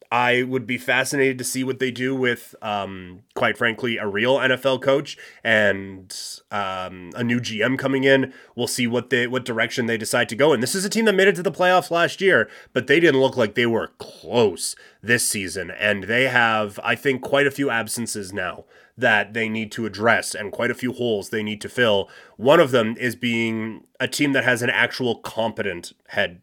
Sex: male